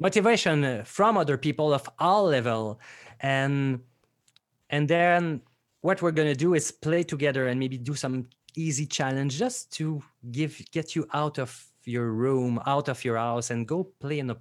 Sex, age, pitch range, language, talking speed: male, 30-49, 120-155 Hz, English, 170 wpm